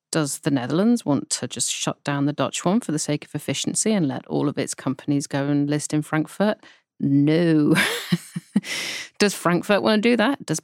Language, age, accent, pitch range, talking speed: English, 30-49, British, 155-210 Hz, 195 wpm